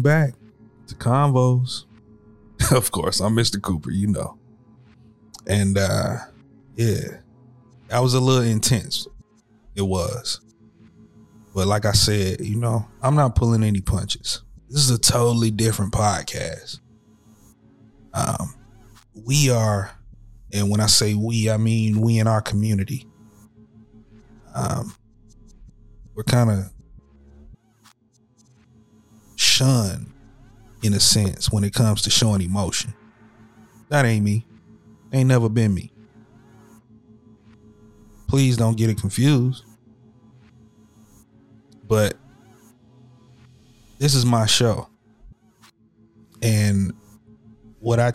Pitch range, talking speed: 105-115 Hz, 105 wpm